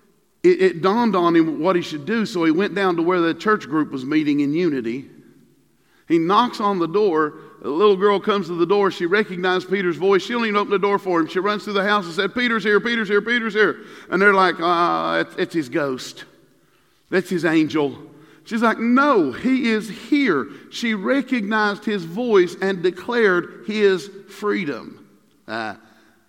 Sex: male